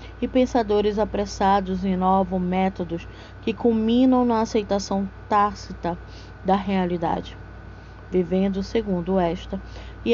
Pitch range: 185-215 Hz